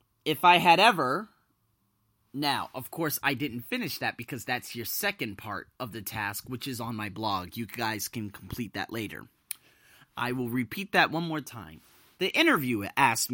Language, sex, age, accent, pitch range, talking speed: English, male, 30-49, American, 110-145 Hz, 180 wpm